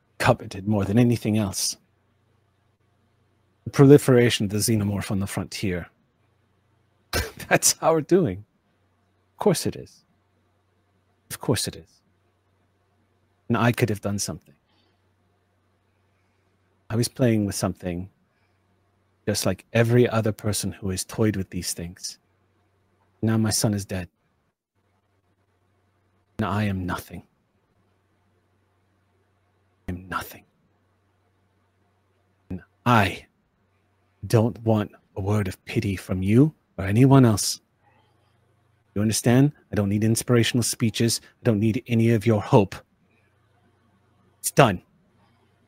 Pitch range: 100-115 Hz